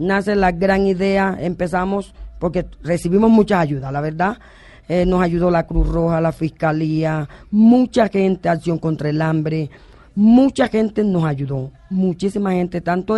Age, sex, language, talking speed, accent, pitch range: 30-49, female, Spanish, 145 wpm, American, 140-180 Hz